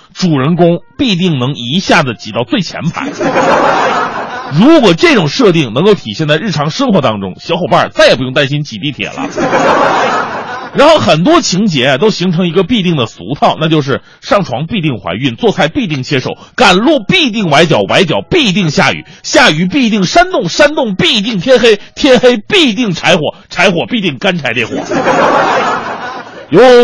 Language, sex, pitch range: Chinese, male, 150-230 Hz